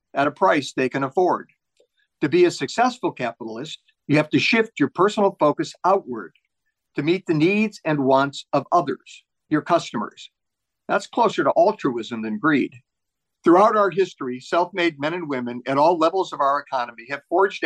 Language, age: English, 50-69